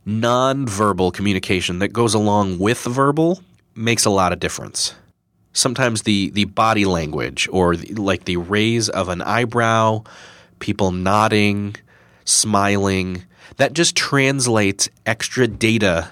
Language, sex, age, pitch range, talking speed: English, male, 30-49, 100-125 Hz, 125 wpm